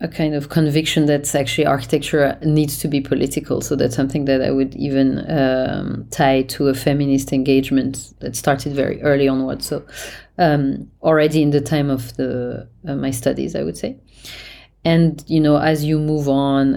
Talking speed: 175 wpm